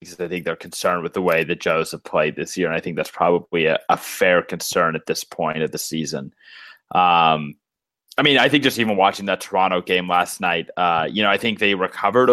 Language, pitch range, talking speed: English, 90-105 Hz, 240 wpm